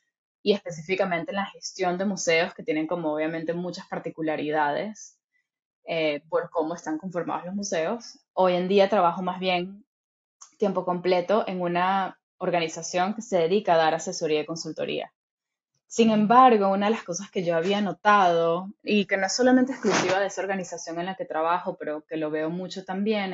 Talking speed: 175 wpm